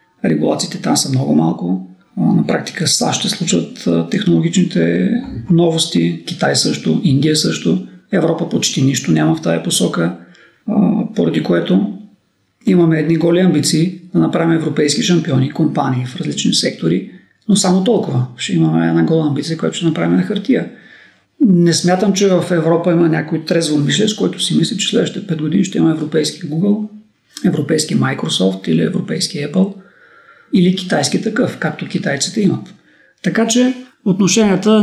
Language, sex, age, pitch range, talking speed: English, male, 40-59, 140-200 Hz, 145 wpm